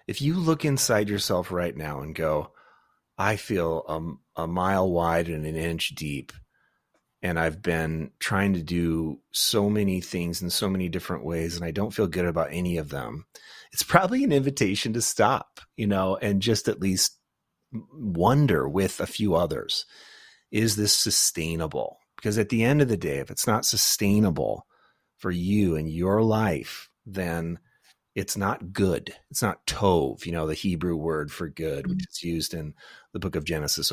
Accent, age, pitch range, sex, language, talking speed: American, 30-49, 80-105 Hz, male, English, 175 wpm